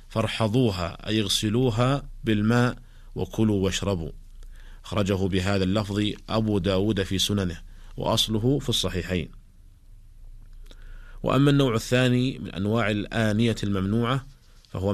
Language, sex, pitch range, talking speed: Arabic, male, 100-115 Hz, 90 wpm